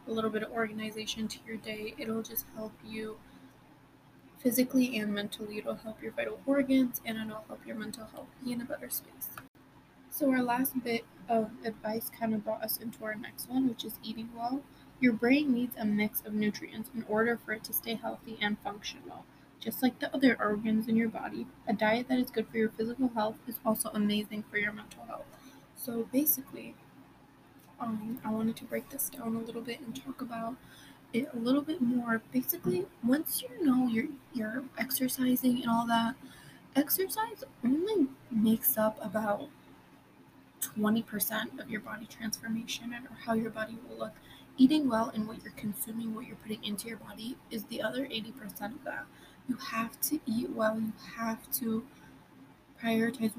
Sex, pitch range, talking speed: female, 220-255 Hz, 180 wpm